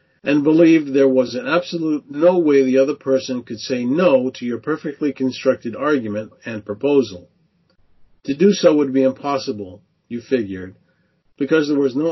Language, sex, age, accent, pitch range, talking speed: English, male, 50-69, American, 120-160 Hz, 165 wpm